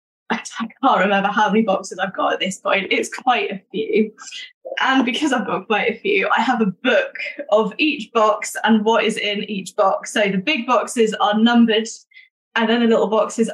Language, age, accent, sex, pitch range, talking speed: English, 10-29, British, female, 205-240 Hz, 205 wpm